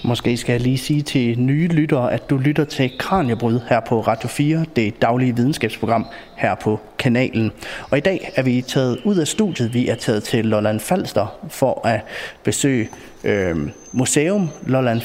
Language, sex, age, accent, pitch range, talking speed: Danish, male, 30-49, native, 120-150 Hz, 175 wpm